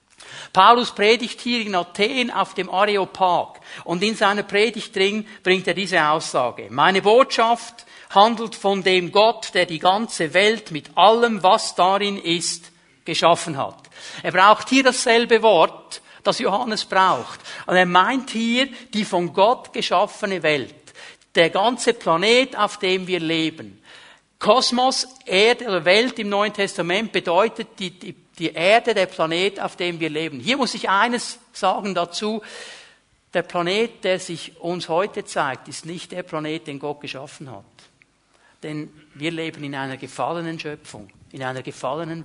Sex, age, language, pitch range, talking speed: male, 60-79, German, 170-220 Hz, 150 wpm